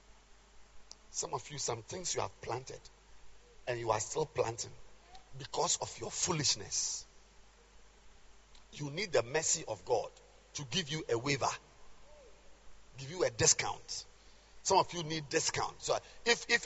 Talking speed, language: 145 wpm, English